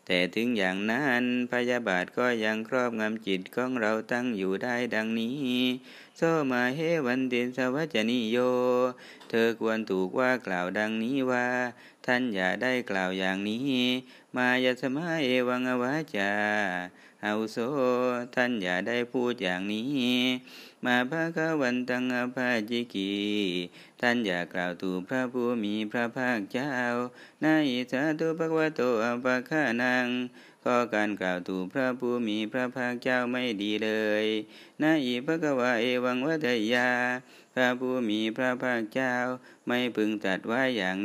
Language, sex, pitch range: Thai, male, 110-125 Hz